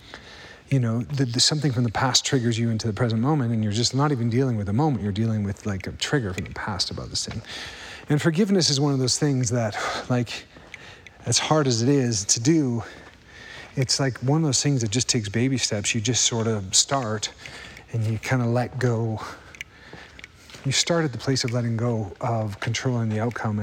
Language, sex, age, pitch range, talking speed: English, male, 40-59, 115-135 Hz, 210 wpm